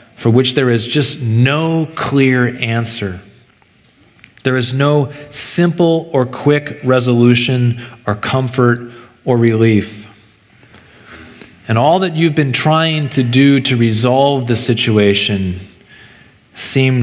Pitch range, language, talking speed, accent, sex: 110-130 Hz, English, 115 wpm, American, male